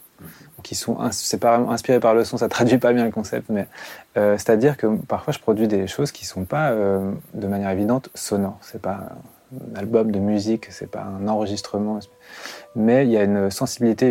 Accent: French